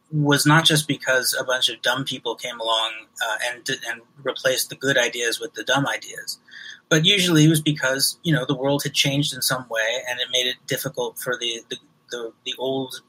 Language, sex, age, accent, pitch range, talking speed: English, male, 30-49, American, 125-150 Hz, 215 wpm